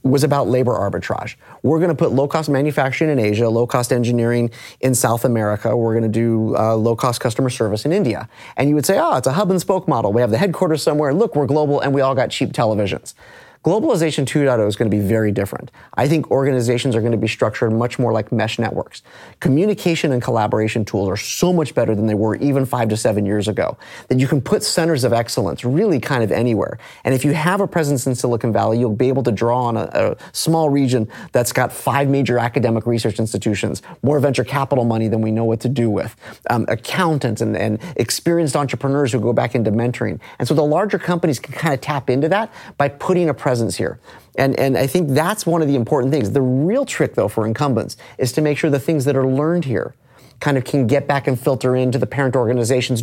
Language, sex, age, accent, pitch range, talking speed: English, male, 30-49, American, 115-150 Hz, 220 wpm